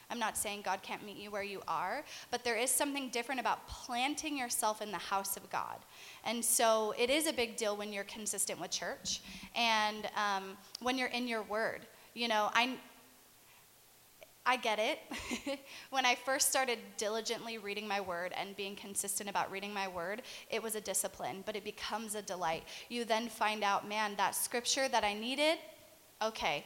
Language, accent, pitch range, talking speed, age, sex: English, American, 205-255 Hz, 185 wpm, 20-39, female